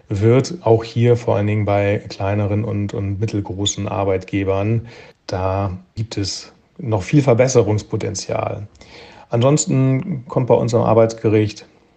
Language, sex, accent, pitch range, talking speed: German, male, German, 100-115 Hz, 115 wpm